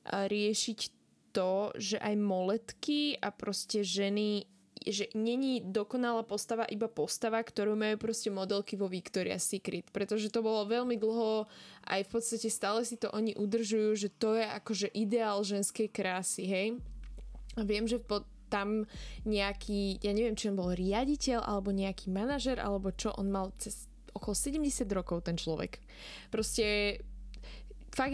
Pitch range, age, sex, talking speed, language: 200-230 Hz, 10-29, female, 145 wpm, Slovak